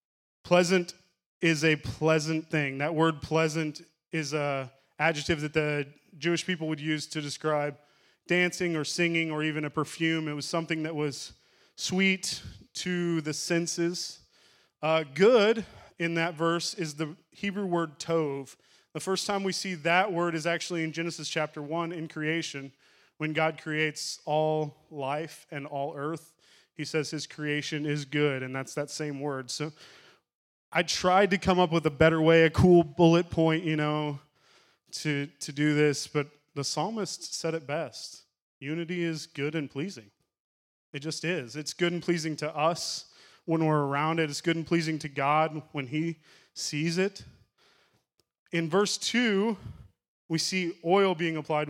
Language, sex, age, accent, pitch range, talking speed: English, male, 20-39, American, 150-170 Hz, 165 wpm